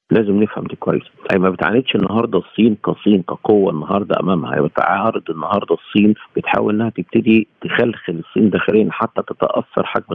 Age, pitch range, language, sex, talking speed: 50-69, 90-105 Hz, Arabic, male, 155 wpm